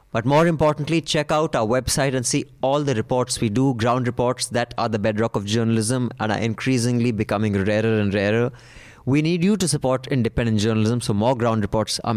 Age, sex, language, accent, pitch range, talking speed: 20-39, male, English, Indian, 115-140 Hz, 200 wpm